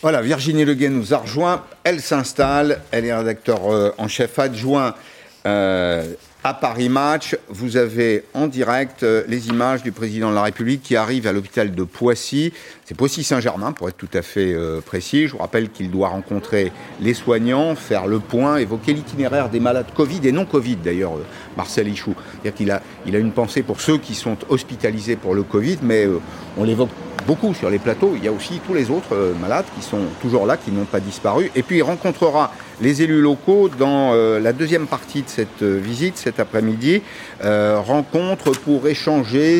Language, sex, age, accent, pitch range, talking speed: French, male, 50-69, French, 110-145 Hz, 195 wpm